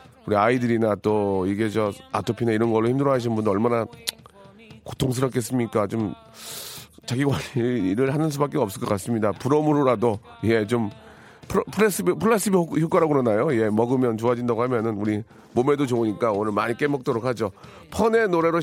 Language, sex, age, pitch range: Korean, male, 40-59, 115-170 Hz